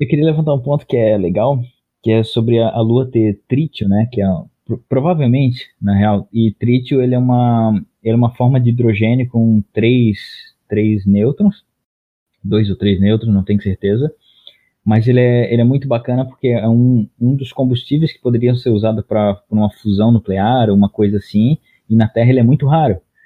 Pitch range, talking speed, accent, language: 105-125 Hz, 200 wpm, Brazilian, Portuguese